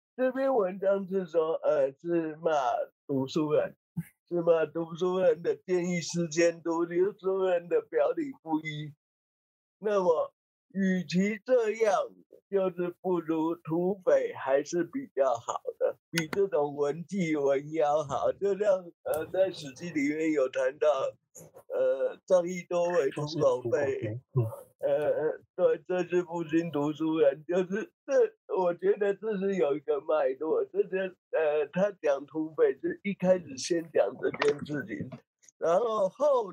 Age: 50-69